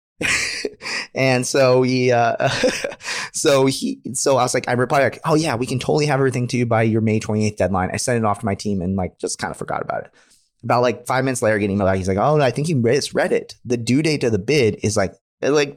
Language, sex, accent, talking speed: English, male, American, 255 wpm